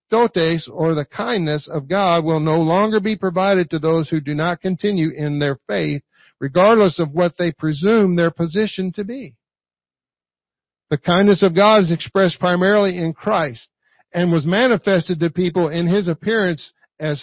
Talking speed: 165 wpm